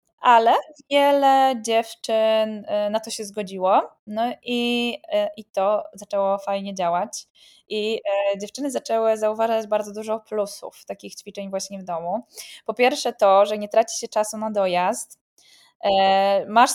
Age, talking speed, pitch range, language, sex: 10-29, 135 wpm, 205-245 Hz, Polish, female